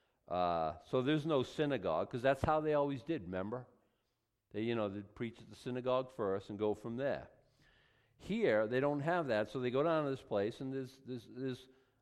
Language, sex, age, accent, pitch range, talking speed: English, male, 50-69, American, 105-145 Hz, 220 wpm